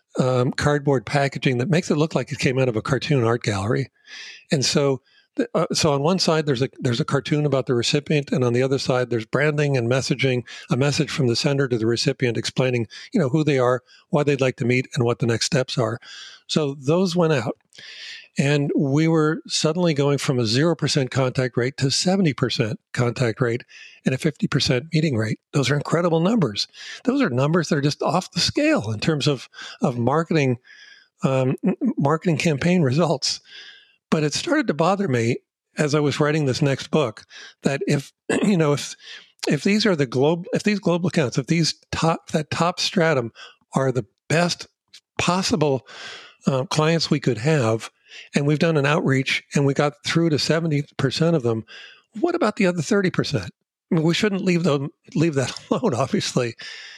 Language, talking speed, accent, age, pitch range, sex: English, 190 wpm, American, 50-69, 130-170 Hz, male